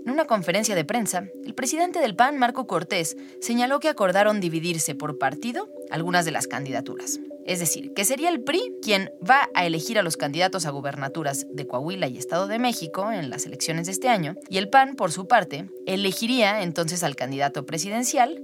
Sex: female